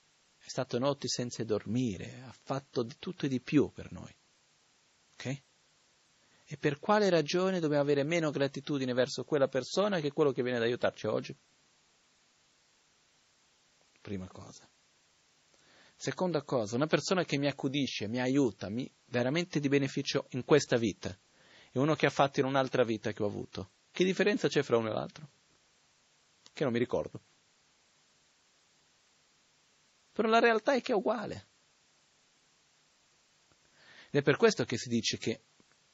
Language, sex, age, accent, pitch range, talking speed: Italian, male, 40-59, native, 120-155 Hz, 145 wpm